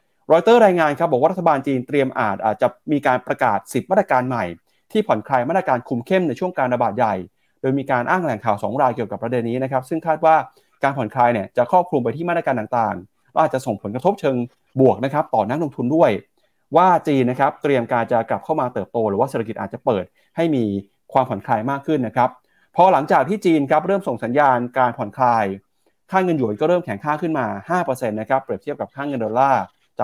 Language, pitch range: Thai, 125-160 Hz